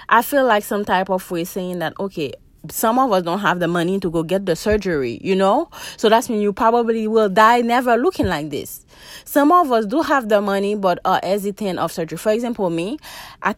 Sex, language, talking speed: female, English, 225 wpm